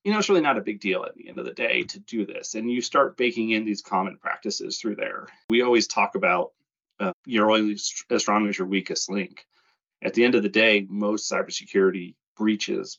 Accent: American